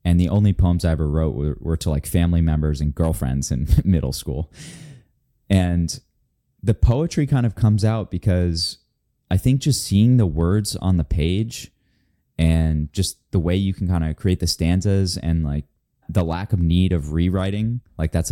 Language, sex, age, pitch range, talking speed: English, male, 20-39, 80-95 Hz, 185 wpm